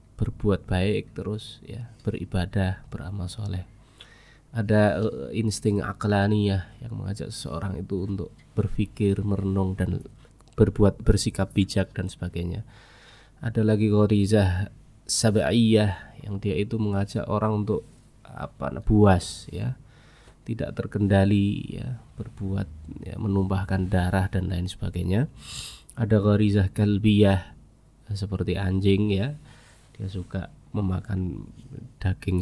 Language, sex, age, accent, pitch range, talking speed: Indonesian, male, 20-39, native, 95-115 Hz, 105 wpm